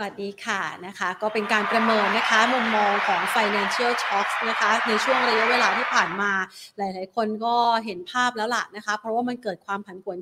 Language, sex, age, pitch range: Thai, female, 30-49, 195-235 Hz